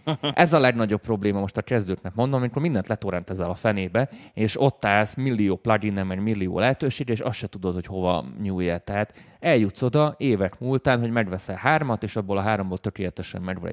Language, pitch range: Hungarian, 90-115 Hz